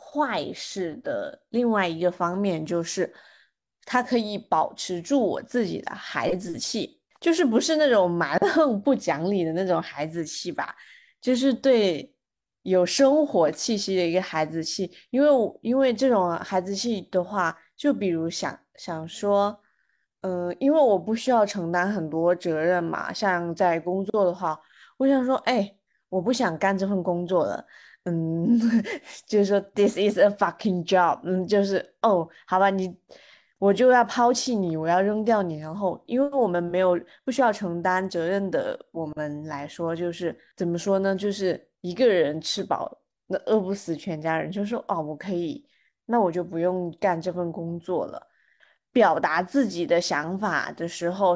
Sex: female